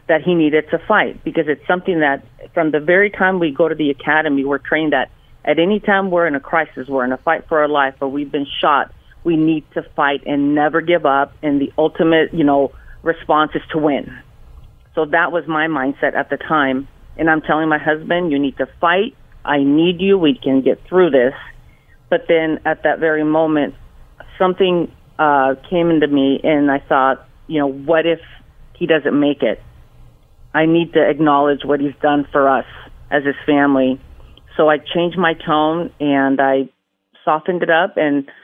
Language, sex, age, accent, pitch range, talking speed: English, female, 40-59, American, 140-160 Hz, 195 wpm